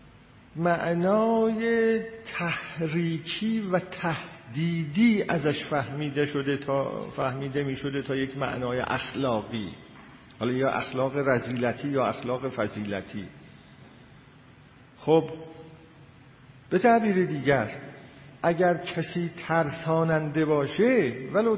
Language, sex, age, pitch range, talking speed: Persian, male, 50-69, 140-190 Hz, 85 wpm